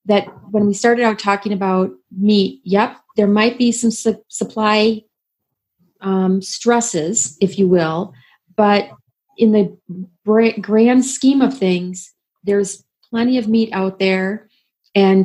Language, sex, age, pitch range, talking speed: English, female, 30-49, 190-225 Hz, 130 wpm